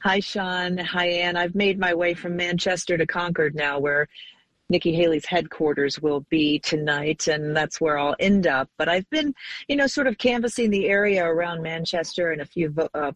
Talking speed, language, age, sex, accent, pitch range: 190 wpm, English, 40-59, female, American, 145-185 Hz